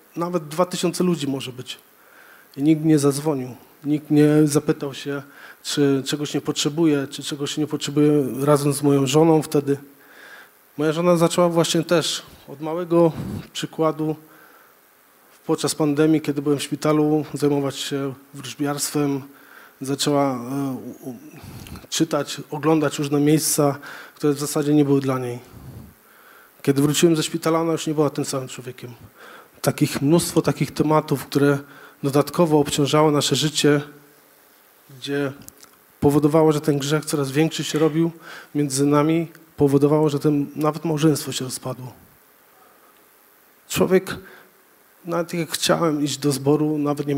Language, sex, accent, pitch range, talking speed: Polish, male, native, 140-155 Hz, 130 wpm